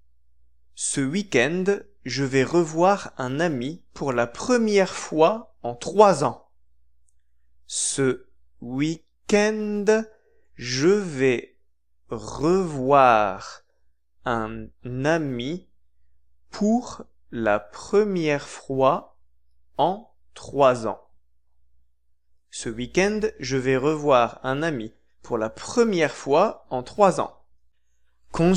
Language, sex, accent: Japanese, male, French